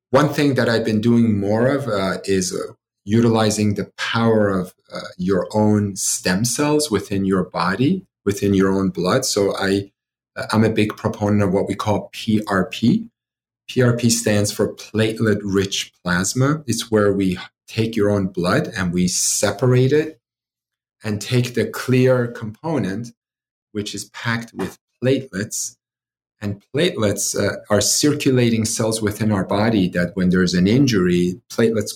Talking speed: 150 wpm